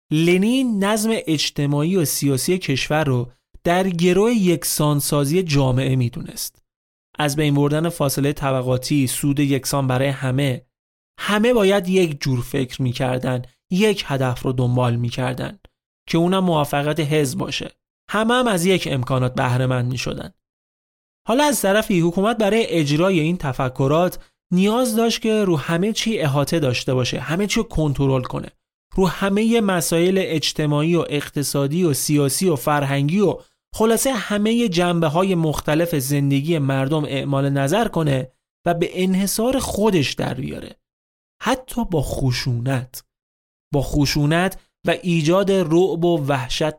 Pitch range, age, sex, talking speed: 135-185 Hz, 30-49, male, 130 wpm